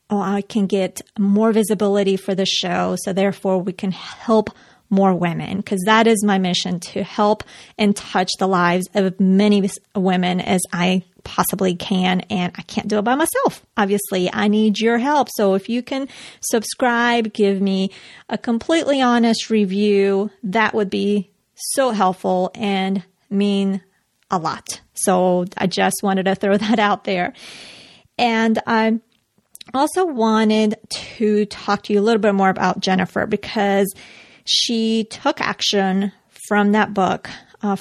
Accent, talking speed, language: American, 150 wpm, English